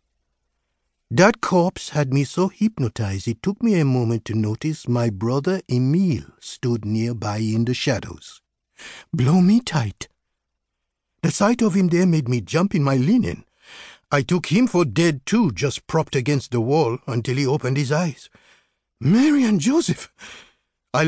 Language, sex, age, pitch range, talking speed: English, male, 60-79, 110-160 Hz, 155 wpm